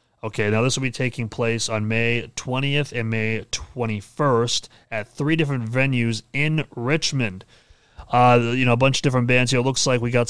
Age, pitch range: 30-49, 110-130 Hz